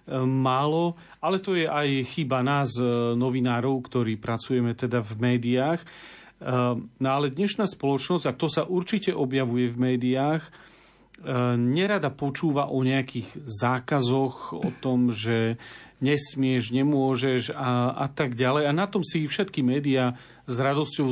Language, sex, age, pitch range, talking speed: Slovak, male, 40-59, 125-155 Hz, 130 wpm